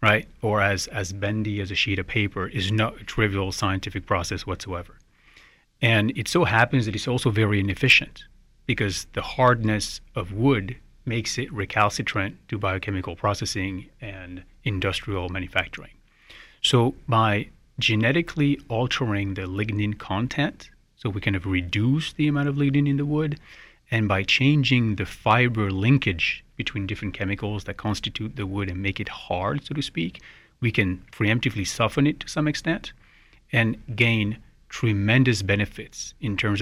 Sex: male